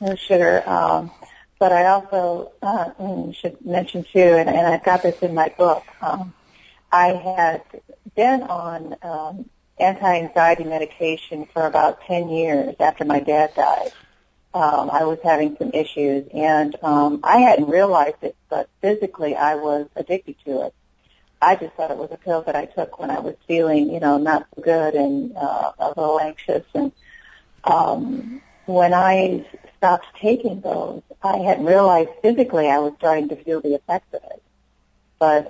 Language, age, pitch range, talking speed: English, 50-69, 150-185 Hz, 160 wpm